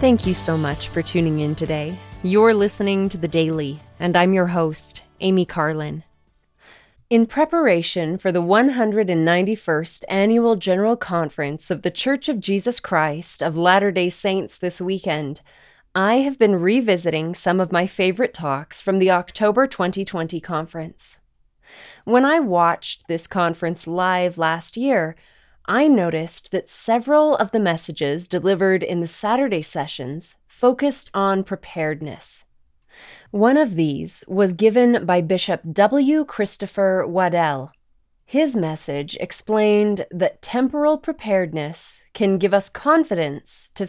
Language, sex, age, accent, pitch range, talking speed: English, female, 20-39, American, 165-220 Hz, 135 wpm